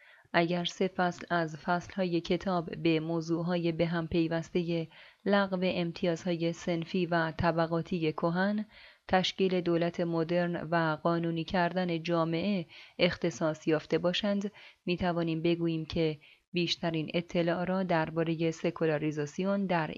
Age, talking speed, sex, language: 30-49, 110 wpm, female, Persian